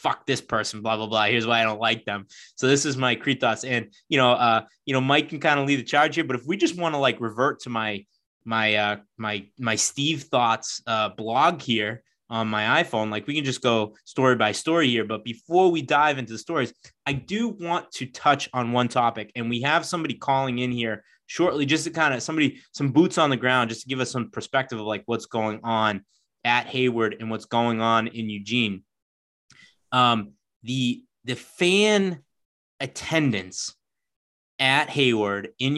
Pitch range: 110-135 Hz